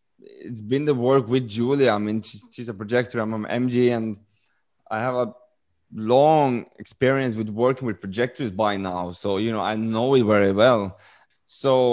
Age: 20-39